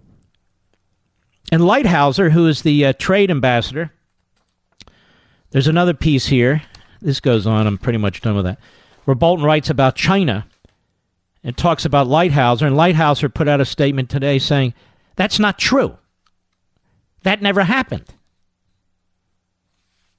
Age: 50-69